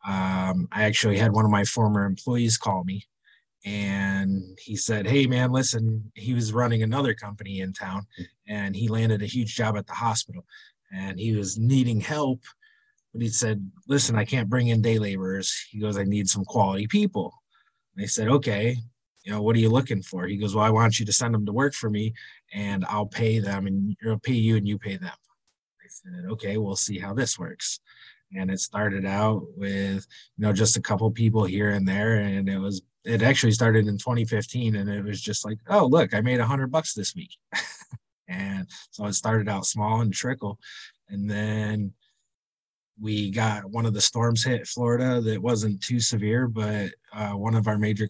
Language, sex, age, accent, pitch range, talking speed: English, male, 30-49, American, 100-115 Hz, 205 wpm